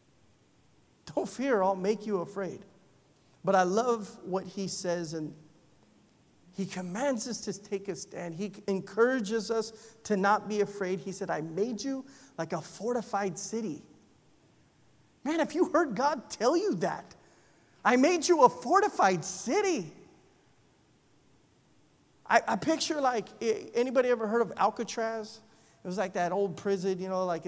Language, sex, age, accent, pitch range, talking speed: English, male, 30-49, American, 195-265 Hz, 150 wpm